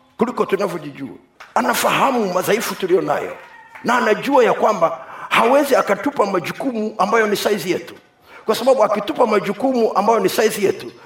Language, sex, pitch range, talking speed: Swahili, male, 165-250 Hz, 130 wpm